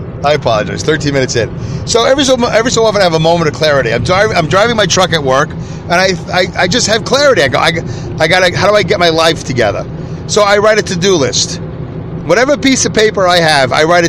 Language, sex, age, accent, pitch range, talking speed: English, male, 40-59, American, 130-185 Hz, 250 wpm